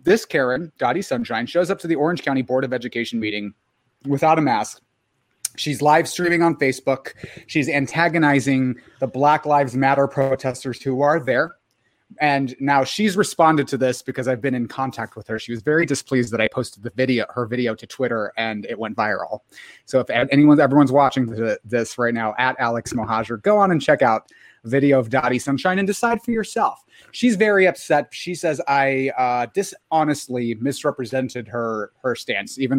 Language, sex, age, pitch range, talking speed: English, male, 30-49, 125-160 Hz, 185 wpm